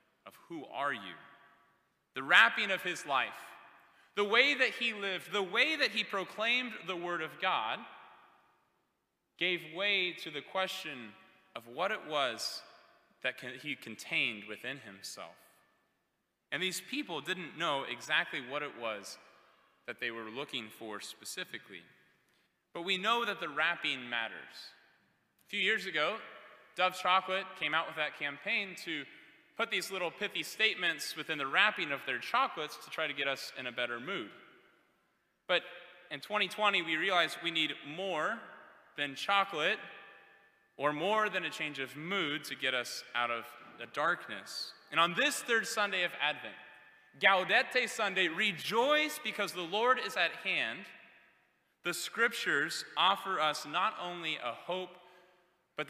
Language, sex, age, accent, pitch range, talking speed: English, male, 20-39, American, 140-195 Hz, 150 wpm